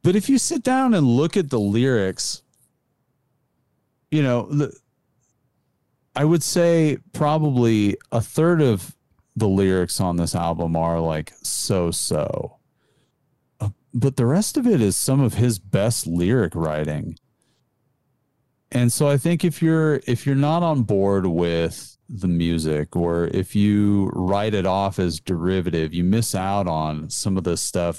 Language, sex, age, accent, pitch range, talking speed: English, male, 40-59, American, 85-135 Hz, 145 wpm